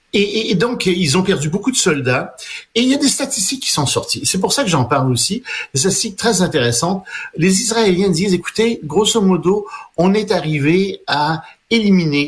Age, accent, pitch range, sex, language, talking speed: 50-69, French, 135-195 Hz, male, French, 200 wpm